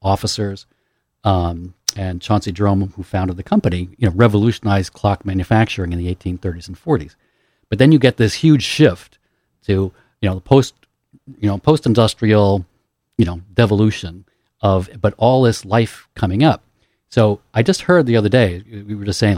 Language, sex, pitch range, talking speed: English, male, 95-115 Hz, 175 wpm